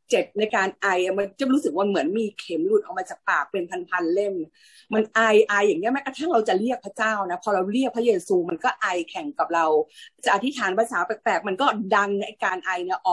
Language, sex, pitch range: Thai, female, 200-270 Hz